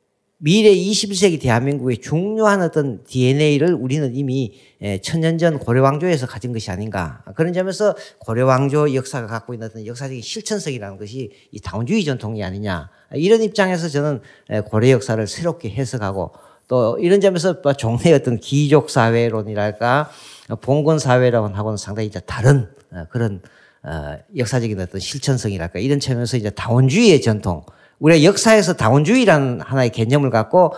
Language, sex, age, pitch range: Korean, male, 50-69, 110-165 Hz